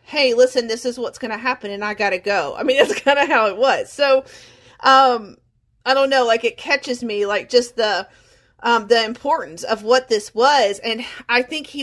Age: 40-59